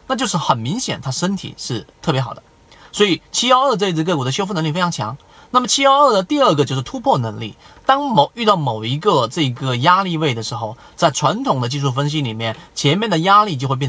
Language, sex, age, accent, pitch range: Chinese, male, 30-49, native, 135-205 Hz